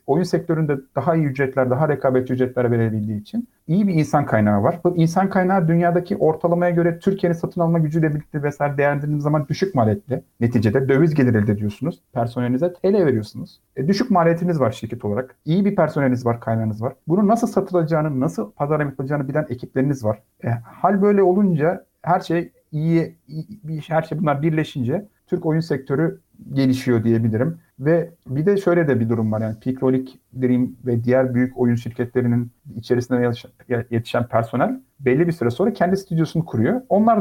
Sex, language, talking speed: male, Turkish, 170 wpm